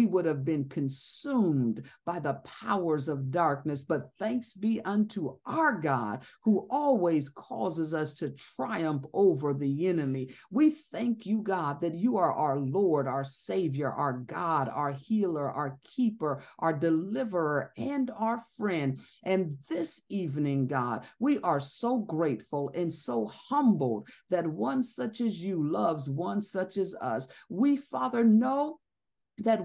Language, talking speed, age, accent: English, 145 wpm, 50-69, American